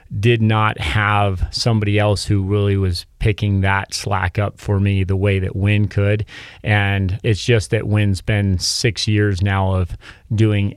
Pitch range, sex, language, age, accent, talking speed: 95-110 Hz, male, English, 30-49, American, 165 wpm